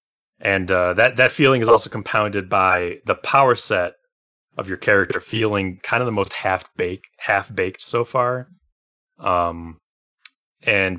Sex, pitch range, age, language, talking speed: male, 90-125 Hz, 20-39, English, 140 wpm